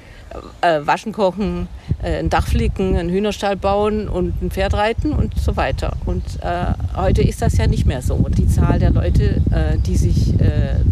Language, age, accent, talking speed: German, 50-69, German, 175 wpm